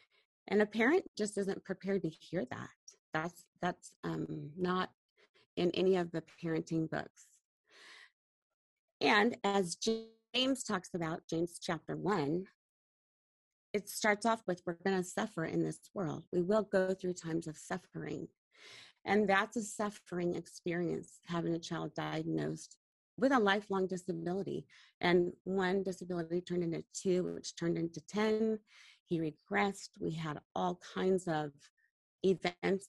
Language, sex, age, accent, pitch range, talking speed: English, female, 30-49, American, 160-195 Hz, 140 wpm